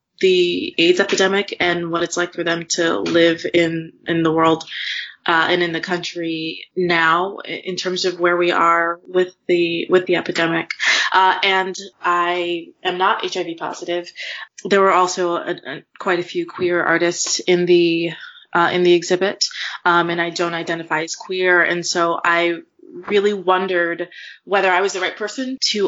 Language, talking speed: English, 170 wpm